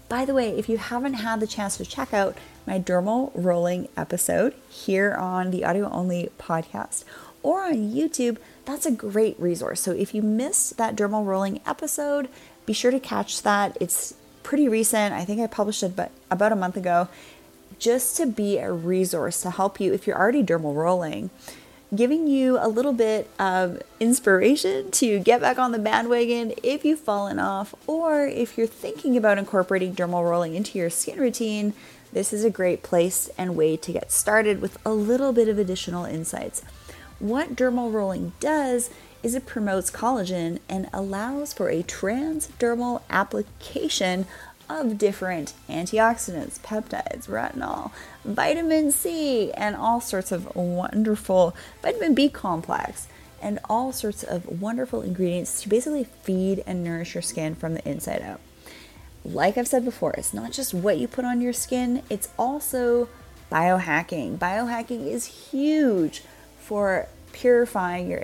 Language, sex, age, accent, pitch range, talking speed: English, female, 30-49, American, 185-245 Hz, 160 wpm